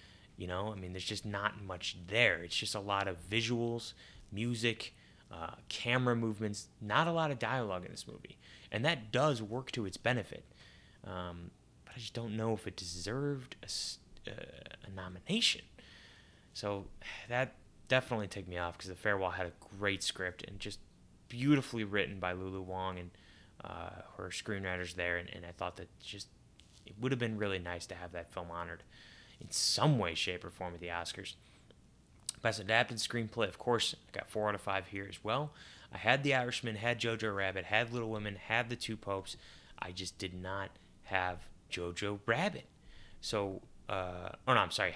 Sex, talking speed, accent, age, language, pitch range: male, 185 wpm, American, 20-39, English, 90-110 Hz